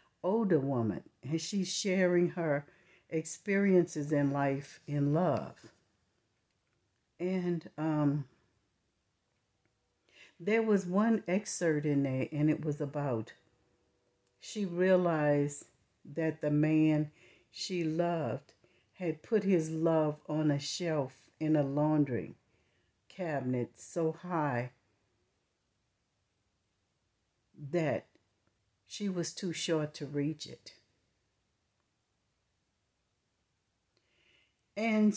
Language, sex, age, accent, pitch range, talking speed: English, female, 60-79, American, 120-170 Hz, 90 wpm